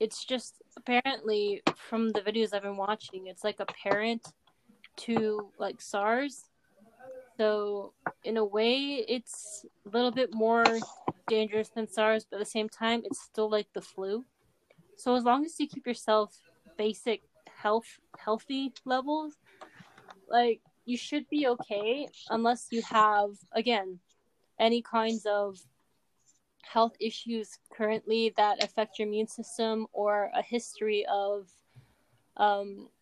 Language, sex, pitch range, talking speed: English, female, 210-240 Hz, 135 wpm